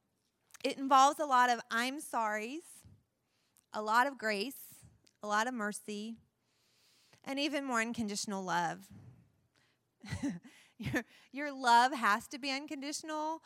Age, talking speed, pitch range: 30-49, 120 wpm, 215-275 Hz